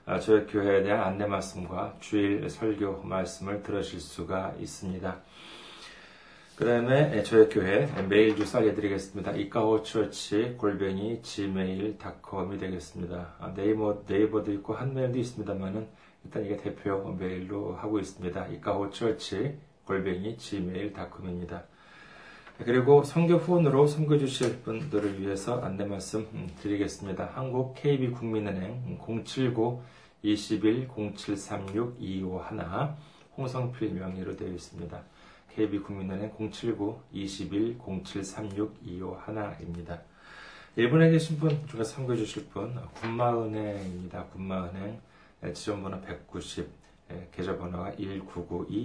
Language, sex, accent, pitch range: Korean, male, native, 90-110 Hz